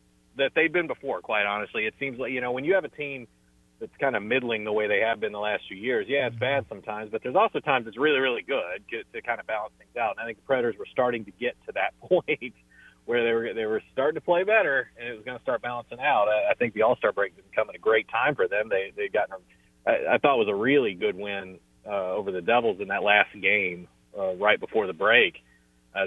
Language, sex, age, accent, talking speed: English, male, 40-59, American, 255 wpm